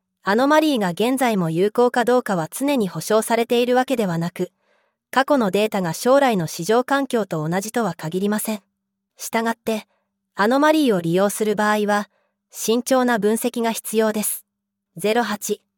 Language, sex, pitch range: Japanese, female, 195-245 Hz